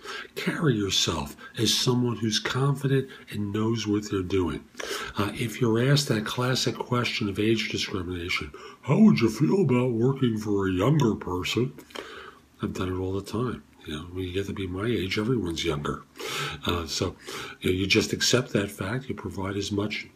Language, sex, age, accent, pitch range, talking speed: English, male, 50-69, American, 95-120 Hz, 180 wpm